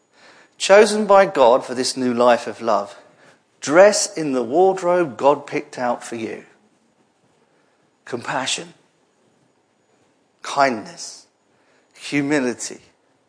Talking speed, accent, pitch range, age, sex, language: 95 wpm, British, 125-185 Hz, 50-69, male, English